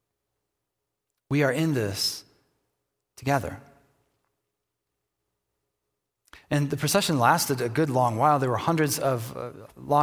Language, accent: English, American